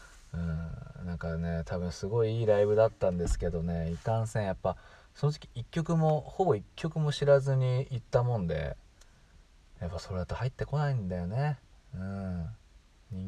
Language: Japanese